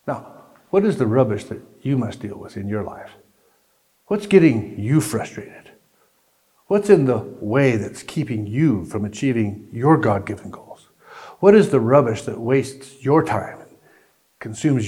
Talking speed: 155 wpm